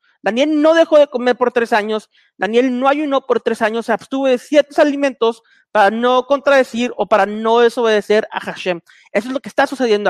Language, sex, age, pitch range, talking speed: Spanish, male, 40-59, 230-285 Hz, 200 wpm